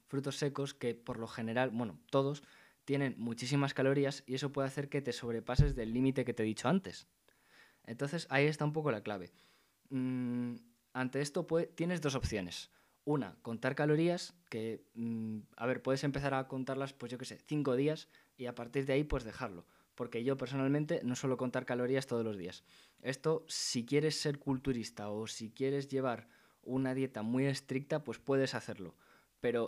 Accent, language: Spanish, Spanish